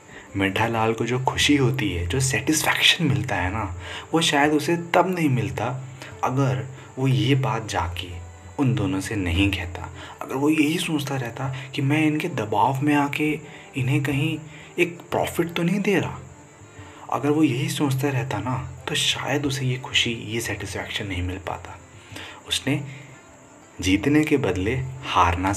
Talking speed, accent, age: 155 wpm, native, 30-49